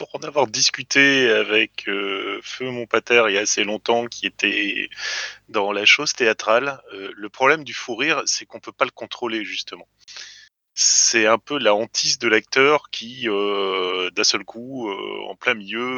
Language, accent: French, French